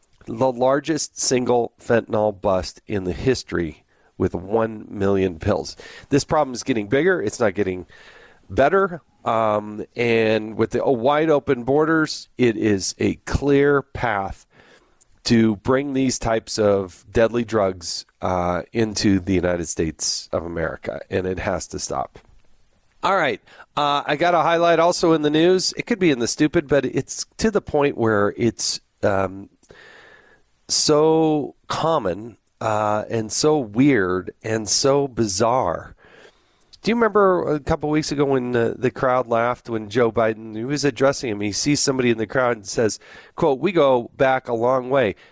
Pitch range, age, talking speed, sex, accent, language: 105-145 Hz, 40-59, 160 wpm, male, American, English